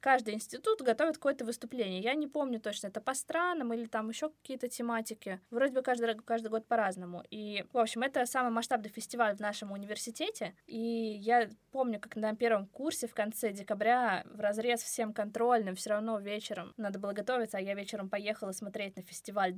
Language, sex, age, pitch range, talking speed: Russian, female, 20-39, 200-235 Hz, 185 wpm